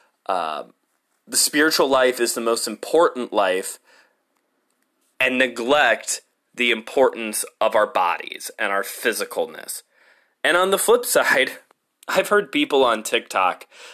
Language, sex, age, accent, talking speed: English, male, 20-39, American, 130 wpm